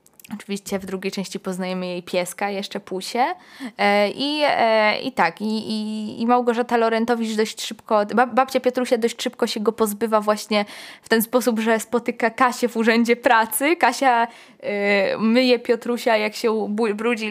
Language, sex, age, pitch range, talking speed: Polish, female, 20-39, 190-230 Hz, 140 wpm